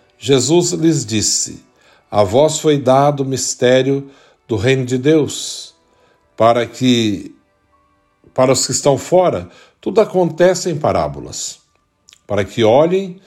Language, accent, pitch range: Portuguese, Brazilian, 120-165 Hz